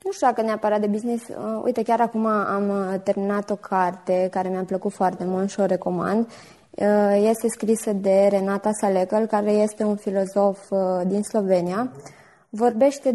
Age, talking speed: 20-39, 150 wpm